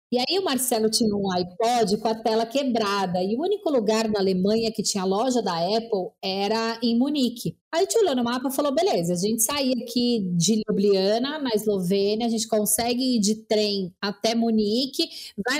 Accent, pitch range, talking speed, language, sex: Brazilian, 220-300 Hz, 195 wpm, Portuguese, female